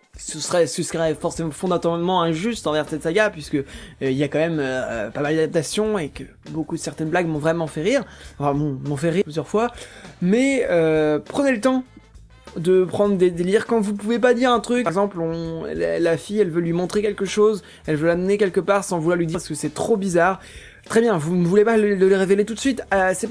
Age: 20-39